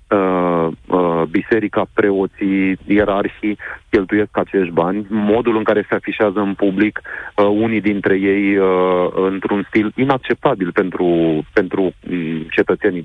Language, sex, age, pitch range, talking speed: Romanian, male, 40-59, 90-110 Hz, 100 wpm